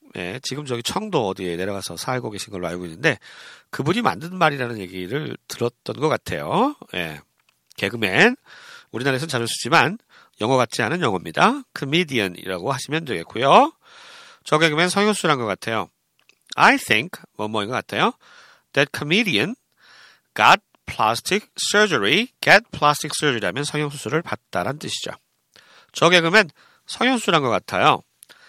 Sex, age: male, 40-59